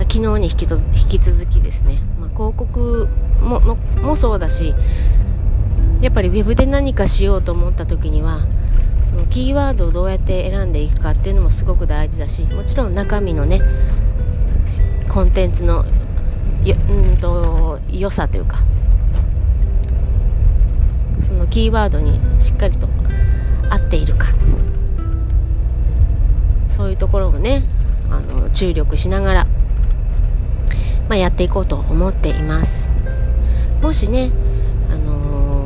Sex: female